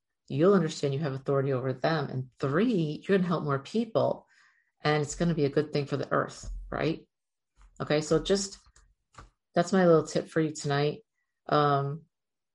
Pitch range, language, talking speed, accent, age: 145-175 Hz, English, 180 wpm, American, 50-69